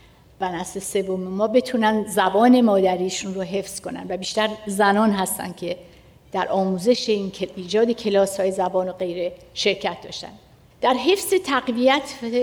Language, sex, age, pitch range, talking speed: Persian, female, 60-79, 195-240 Hz, 140 wpm